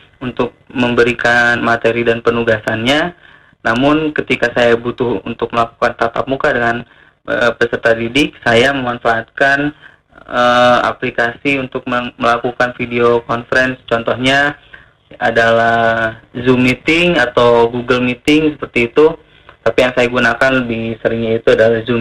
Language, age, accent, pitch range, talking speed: Indonesian, 20-39, native, 120-145 Hz, 120 wpm